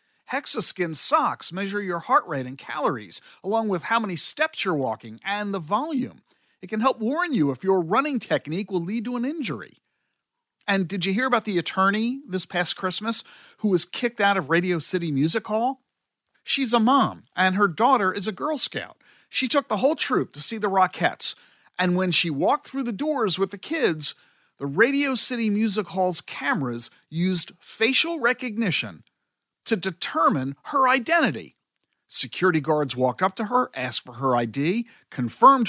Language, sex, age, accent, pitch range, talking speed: English, male, 50-69, American, 155-240 Hz, 175 wpm